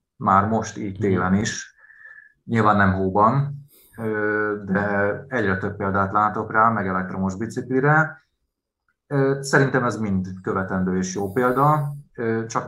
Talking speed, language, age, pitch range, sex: 120 wpm, Hungarian, 30-49, 95-125 Hz, male